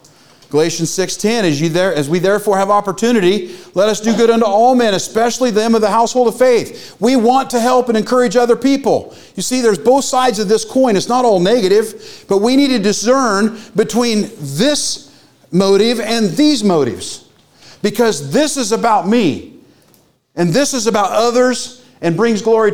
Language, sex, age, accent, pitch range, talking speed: English, male, 40-59, American, 180-240 Hz, 180 wpm